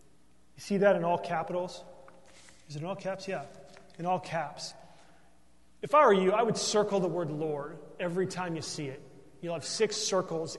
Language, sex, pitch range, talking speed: English, male, 150-195 Hz, 195 wpm